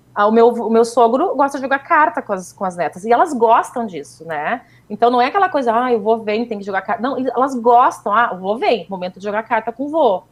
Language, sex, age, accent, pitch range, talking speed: Portuguese, female, 30-49, Brazilian, 210-280 Hz, 275 wpm